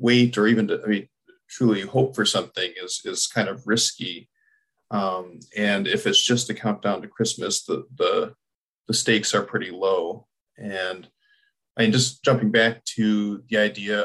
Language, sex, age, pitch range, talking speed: English, male, 40-59, 105-125 Hz, 170 wpm